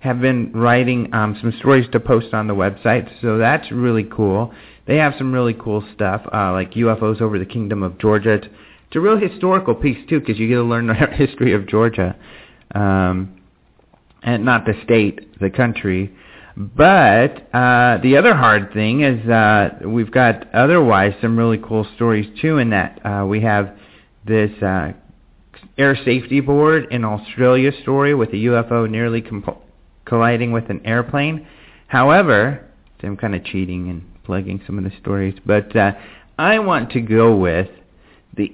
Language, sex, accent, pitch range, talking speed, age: English, male, American, 100-130 Hz, 170 wpm, 40-59